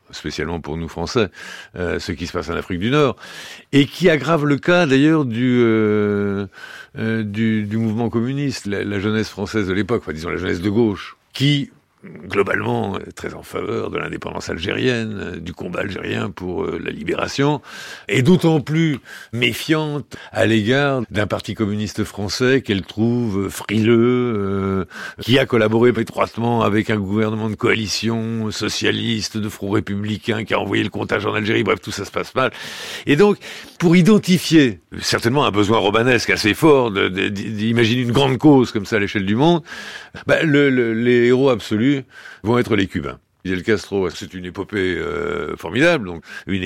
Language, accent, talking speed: French, French, 170 wpm